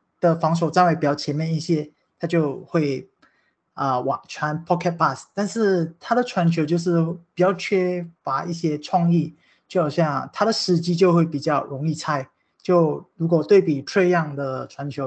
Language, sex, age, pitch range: Chinese, male, 20-39, 150-175 Hz